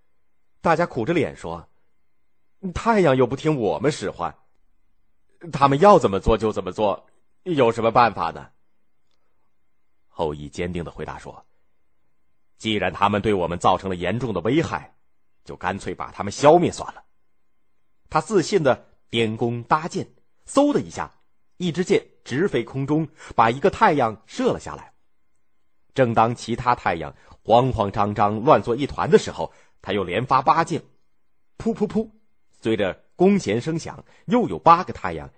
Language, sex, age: Chinese, male, 30-49